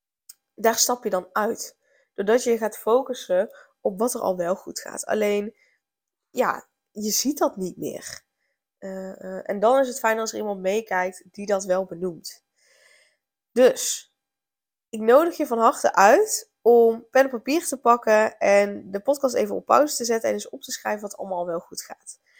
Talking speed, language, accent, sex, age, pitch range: 185 wpm, Dutch, Dutch, female, 10-29, 195-245 Hz